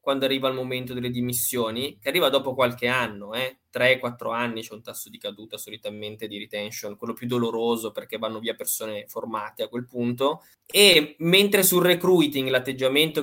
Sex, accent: male, native